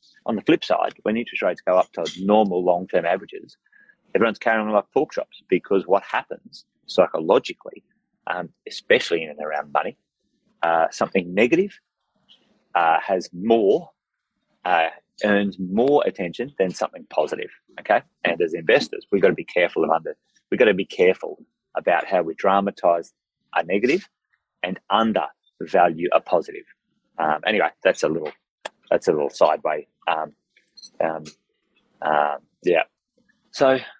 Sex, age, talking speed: male, 30-49, 145 wpm